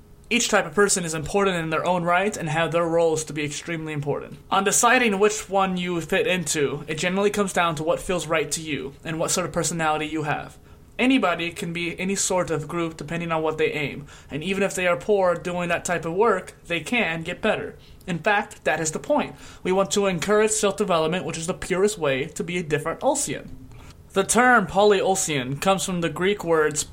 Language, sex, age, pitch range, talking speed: English, male, 20-39, 155-195 Hz, 220 wpm